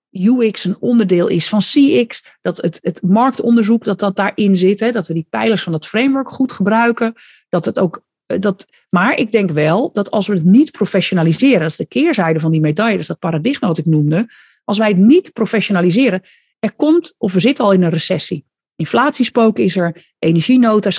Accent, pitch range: Dutch, 175-240 Hz